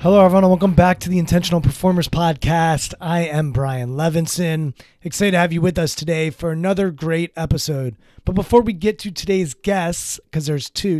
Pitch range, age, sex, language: 145-185 Hz, 30-49, male, English